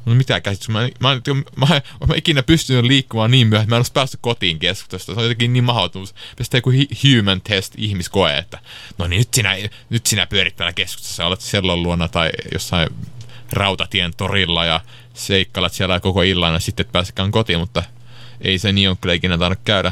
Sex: male